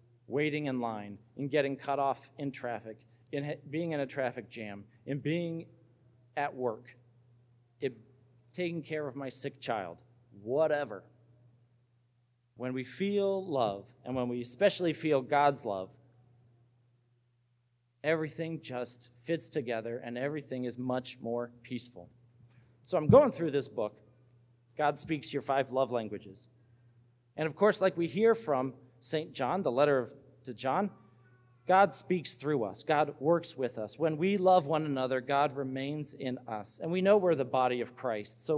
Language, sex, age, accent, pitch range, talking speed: English, male, 40-59, American, 120-155 Hz, 155 wpm